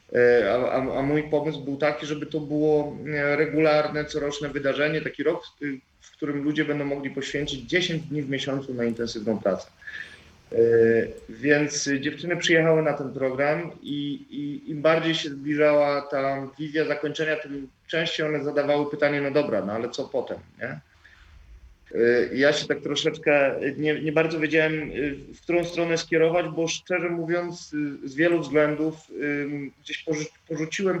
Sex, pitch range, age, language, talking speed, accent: male, 135-155 Hz, 40-59, Polish, 145 wpm, native